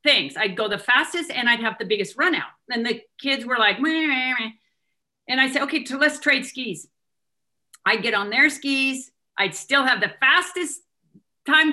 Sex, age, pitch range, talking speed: female, 40-59, 230-305 Hz, 185 wpm